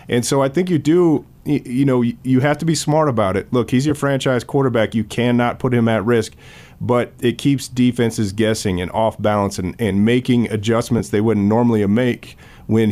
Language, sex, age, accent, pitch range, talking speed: English, male, 30-49, American, 110-125 Hz, 200 wpm